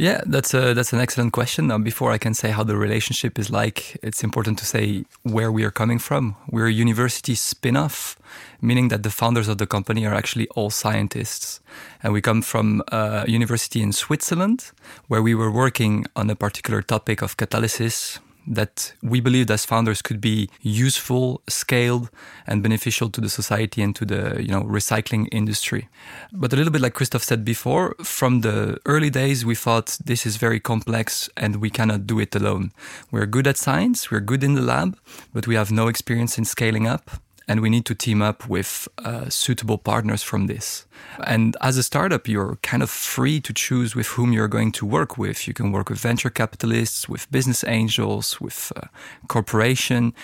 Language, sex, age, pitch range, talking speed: English, male, 20-39, 110-125 Hz, 190 wpm